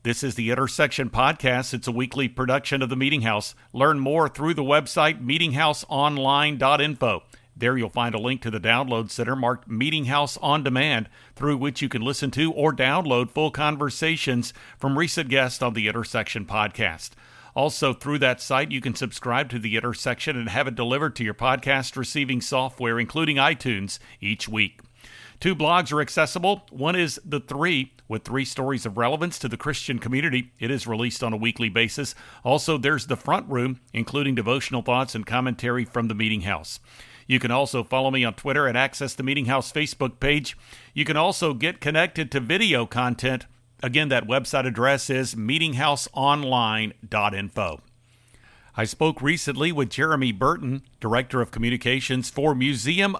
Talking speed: 170 wpm